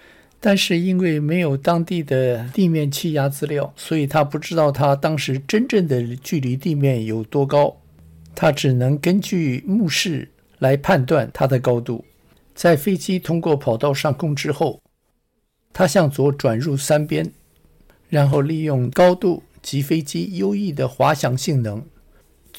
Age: 60-79